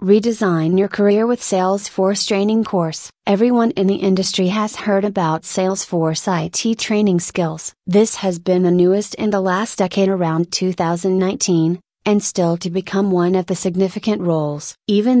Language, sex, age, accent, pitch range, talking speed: English, female, 30-49, American, 180-210 Hz, 155 wpm